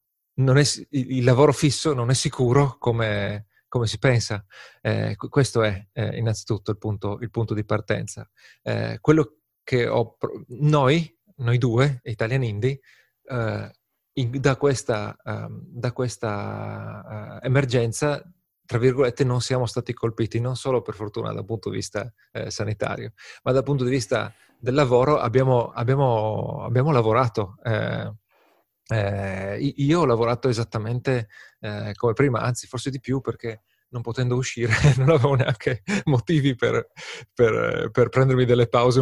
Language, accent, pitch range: Italian, native, 115-140 Hz